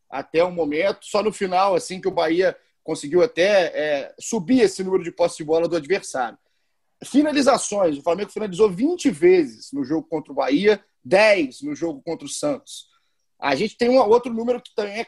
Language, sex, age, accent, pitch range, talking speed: Portuguese, male, 40-59, Brazilian, 170-240 Hz, 190 wpm